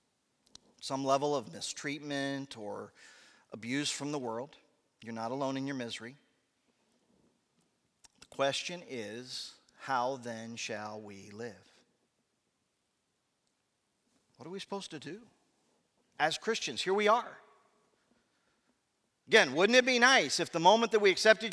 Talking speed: 125 wpm